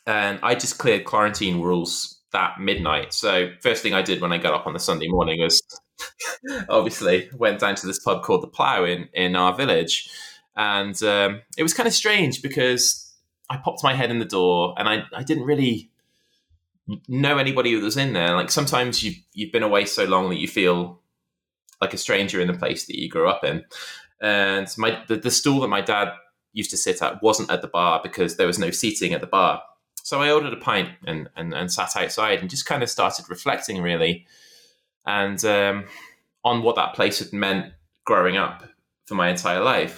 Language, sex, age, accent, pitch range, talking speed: English, male, 20-39, British, 90-120 Hz, 205 wpm